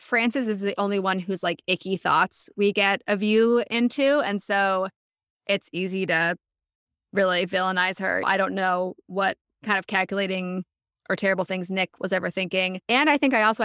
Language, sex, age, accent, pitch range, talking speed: English, female, 20-39, American, 185-220 Hz, 180 wpm